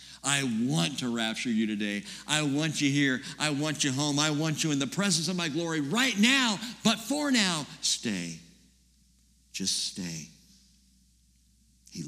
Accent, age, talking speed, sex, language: American, 60-79, 160 wpm, male, English